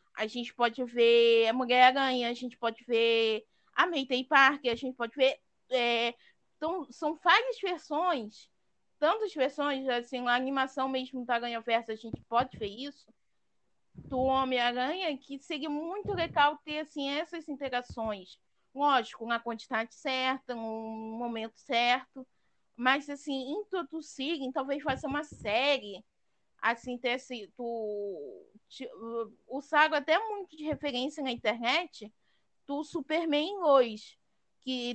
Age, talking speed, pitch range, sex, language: 20-39, 125 wpm, 235-290 Hz, female, Portuguese